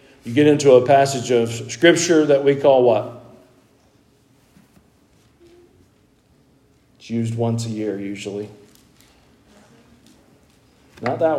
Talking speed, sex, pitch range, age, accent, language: 100 wpm, male, 125-180 Hz, 40-59, American, English